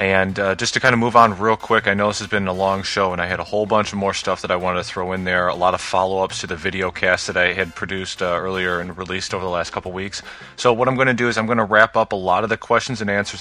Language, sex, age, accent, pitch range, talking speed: English, male, 20-39, American, 95-115 Hz, 330 wpm